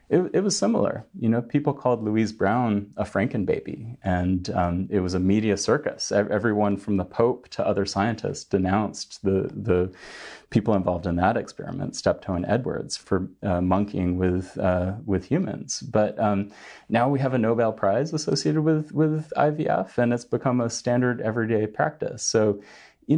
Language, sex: English, male